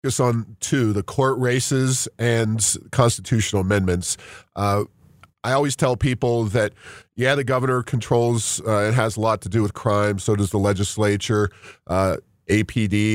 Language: English